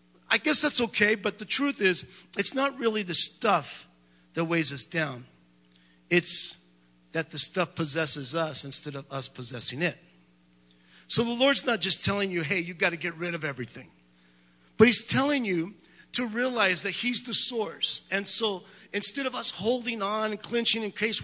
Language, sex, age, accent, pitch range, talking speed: English, male, 50-69, American, 145-210 Hz, 180 wpm